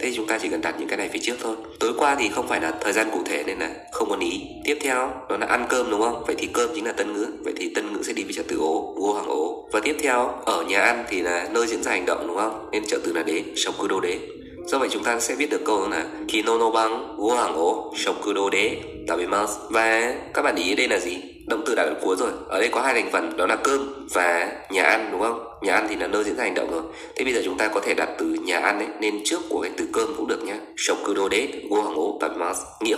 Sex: male